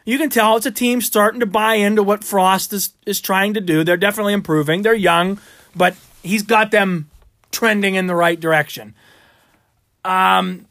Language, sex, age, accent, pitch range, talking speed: English, male, 30-49, American, 145-200 Hz, 180 wpm